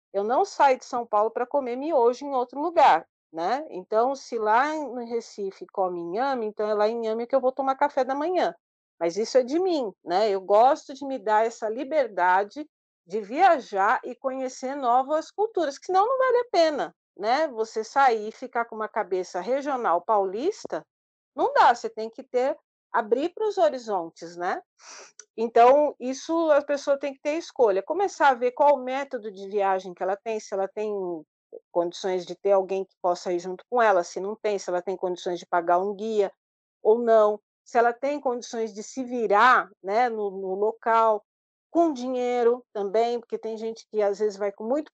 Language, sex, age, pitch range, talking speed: Portuguese, female, 50-69, 200-270 Hz, 195 wpm